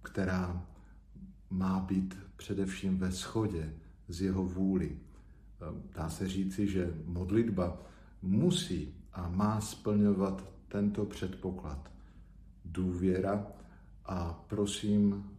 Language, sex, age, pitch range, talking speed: Slovak, male, 50-69, 90-100 Hz, 90 wpm